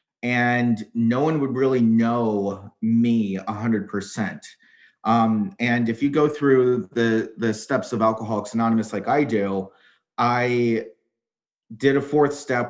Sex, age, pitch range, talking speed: male, 30-49, 110-135 Hz, 130 wpm